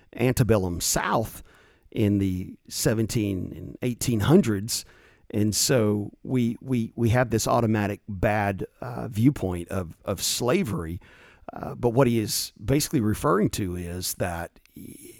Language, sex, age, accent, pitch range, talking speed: English, male, 50-69, American, 100-140 Hz, 120 wpm